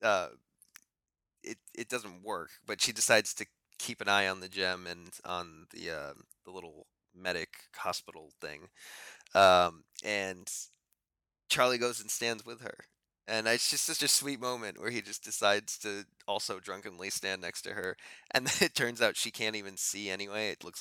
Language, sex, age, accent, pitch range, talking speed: English, male, 20-39, American, 95-120 Hz, 180 wpm